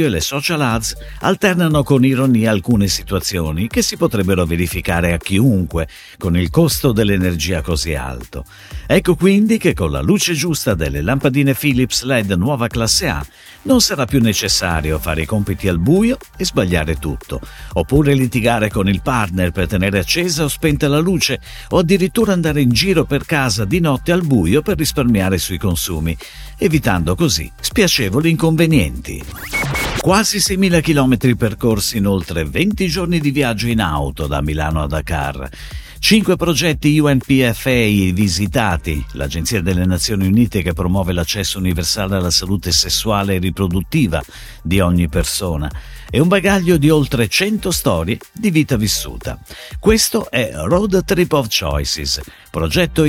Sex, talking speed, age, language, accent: male, 150 wpm, 50-69, Italian, native